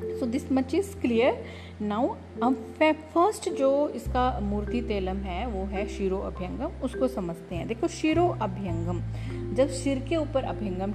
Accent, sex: Indian, female